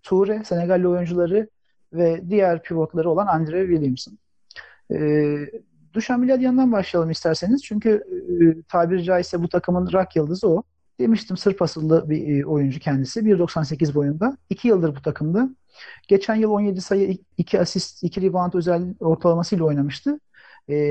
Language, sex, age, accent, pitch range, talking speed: Turkish, male, 50-69, native, 165-220 Hz, 140 wpm